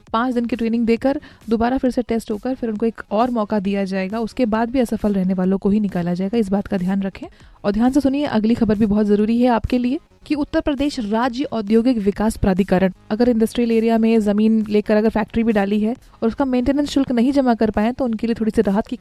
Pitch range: 210-250 Hz